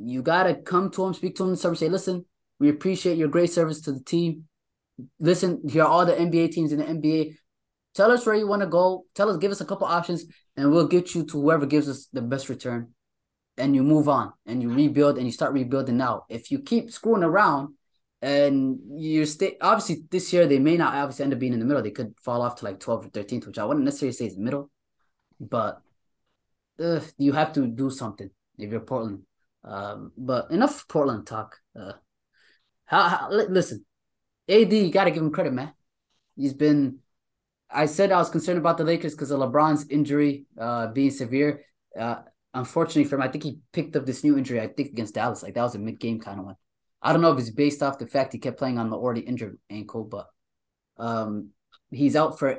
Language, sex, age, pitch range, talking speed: English, male, 20-39, 125-165 Hz, 220 wpm